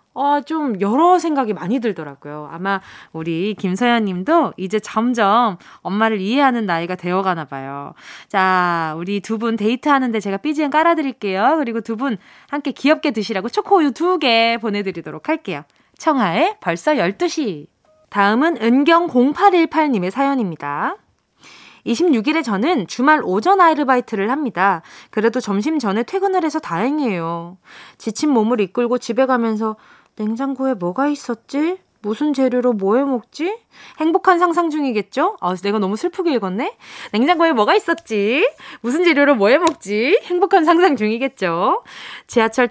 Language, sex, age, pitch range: Korean, female, 20-39, 210-310 Hz